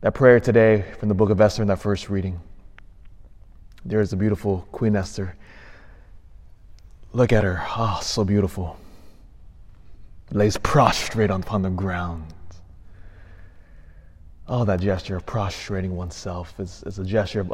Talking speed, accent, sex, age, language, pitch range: 140 wpm, American, male, 20-39, English, 90-110 Hz